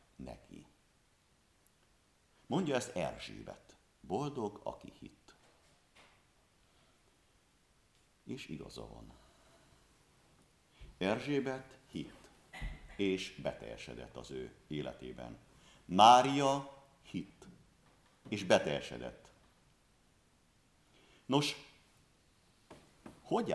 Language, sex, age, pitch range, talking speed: Hungarian, male, 60-79, 80-115 Hz, 55 wpm